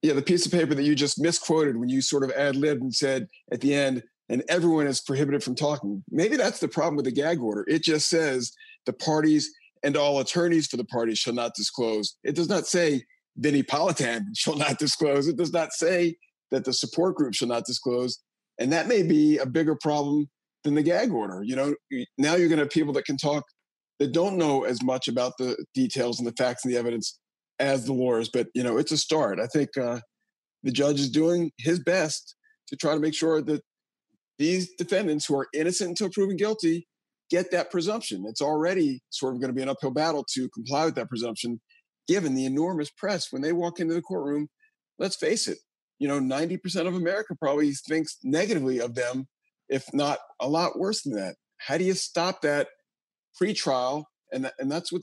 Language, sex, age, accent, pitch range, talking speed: English, male, 40-59, American, 135-175 Hz, 210 wpm